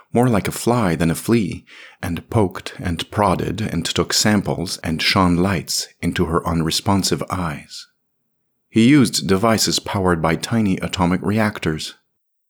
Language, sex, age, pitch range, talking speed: English, male, 40-59, 85-110 Hz, 140 wpm